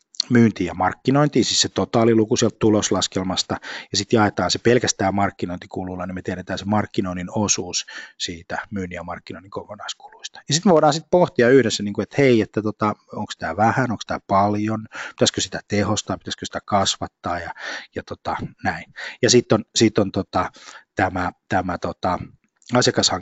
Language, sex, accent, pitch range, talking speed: Finnish, male, native, 95-125 Hz, 160 wpm